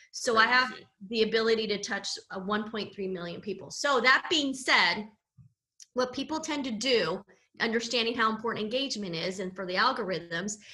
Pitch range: 195-240 Hz